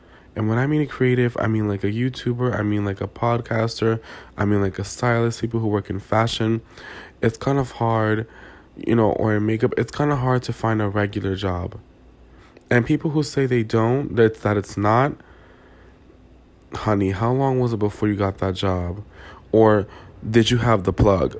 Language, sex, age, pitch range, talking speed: English, male, 20-39, 100-125 Hz, 195 wpm